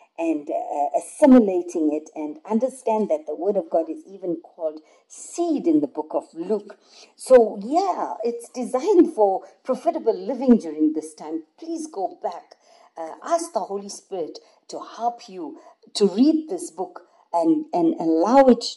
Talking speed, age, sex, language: 155 wpm, 50-69, female, English